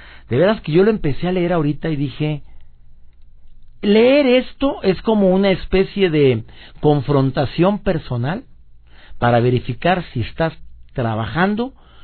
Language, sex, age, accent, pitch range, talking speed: Spanish, male, 50-69, Mexican, 115-180 Hz, 125 wpm